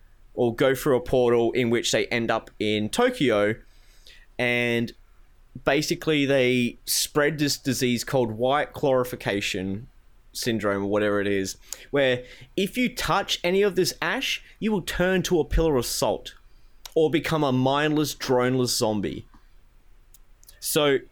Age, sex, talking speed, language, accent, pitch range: 20-39, male, 140 wpm, English, Australian, 115-145 Hz